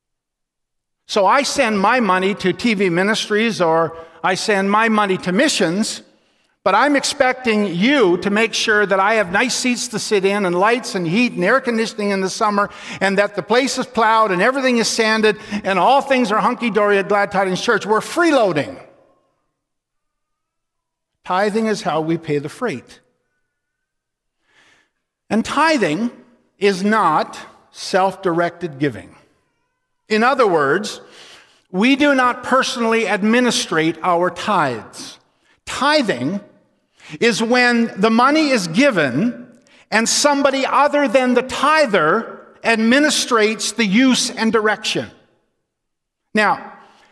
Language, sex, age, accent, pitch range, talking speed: English, male, 50-69, American, 185-250 Hz, 130 wpm